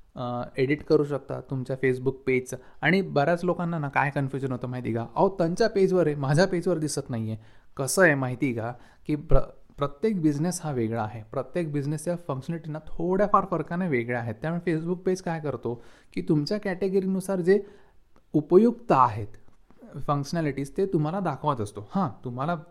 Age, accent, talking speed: 30-49, native, 150 wpm